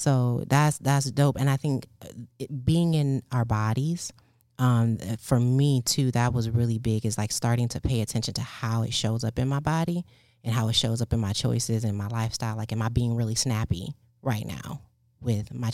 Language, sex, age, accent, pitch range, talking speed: English, female, 30-49, American, 115-135 Hz, 205 wpm